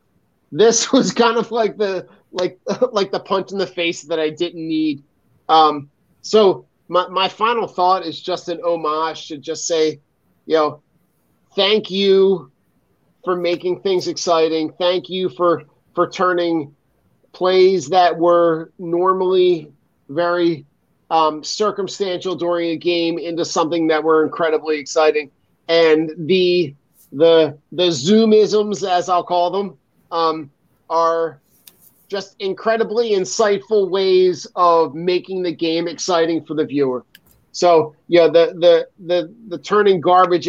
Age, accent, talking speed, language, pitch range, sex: 30-49, American, 135 wpm, English, 160-195 Hz, male